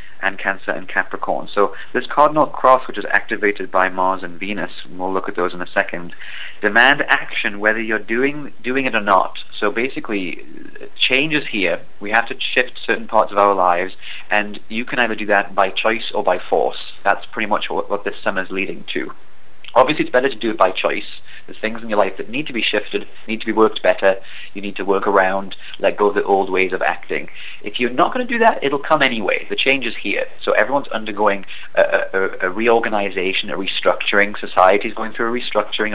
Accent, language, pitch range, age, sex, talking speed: British, English, 95-115 Hz, 30-49, male, 215 wpm